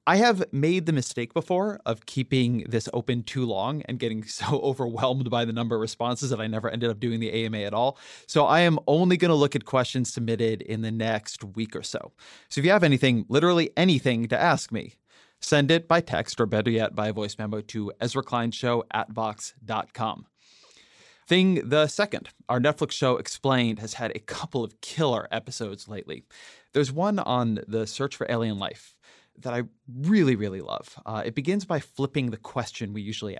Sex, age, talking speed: male, 30-49, 195 wpm